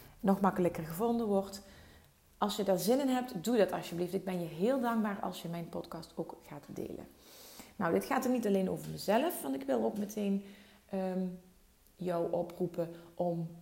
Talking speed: 180 wpm